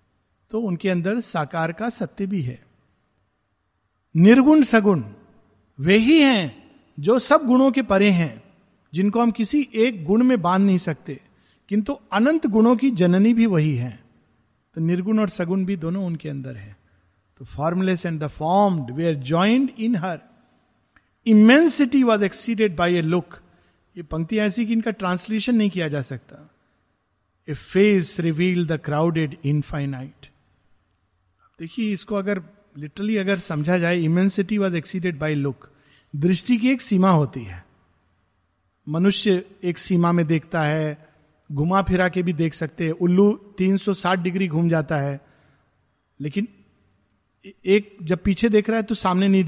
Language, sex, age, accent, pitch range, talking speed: Hindi, male, 50-69, native, 140-205 Hz, 150 wpm